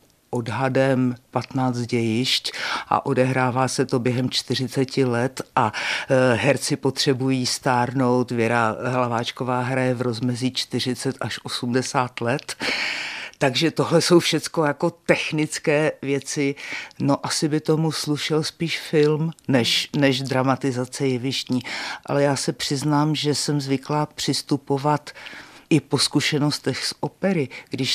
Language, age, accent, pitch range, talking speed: Czech, 50-69, native, 125-145 Hz, 120 wpm